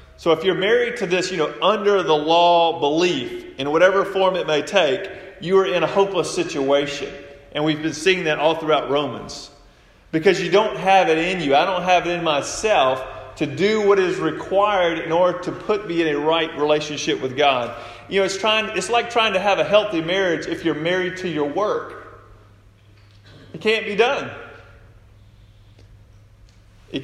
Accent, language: American, English